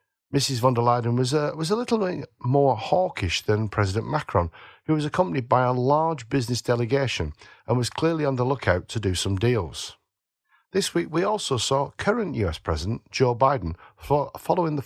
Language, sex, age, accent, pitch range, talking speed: English, male, 50-69, British, 100-135 Hz, 180 wpm